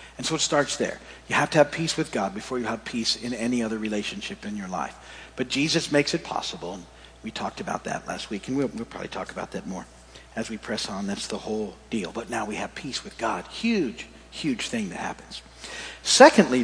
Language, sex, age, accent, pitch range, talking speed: English, male, 50-69, American, 140-205 Hz, 230 wpm